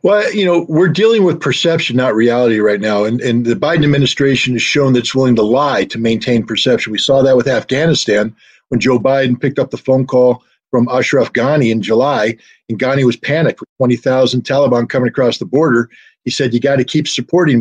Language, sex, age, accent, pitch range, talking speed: English, male, 50-69, American, 125-165 Hz, 210 wpm